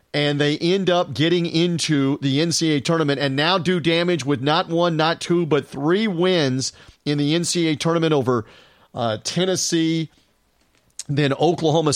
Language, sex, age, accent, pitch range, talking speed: English, male, 40-59, American, 130-165 Hz, 150 wpm